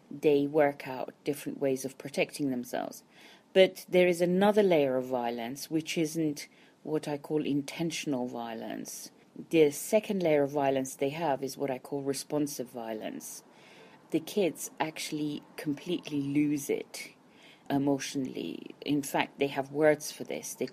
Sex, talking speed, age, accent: female, 145 wpm, 40-59, British